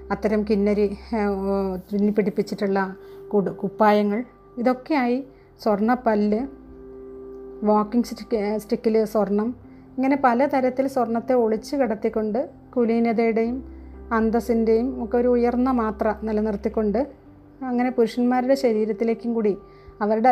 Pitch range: 210-240 Hz